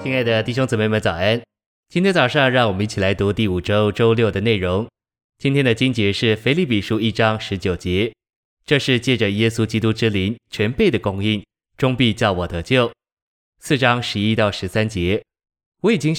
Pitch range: 100-125 Hz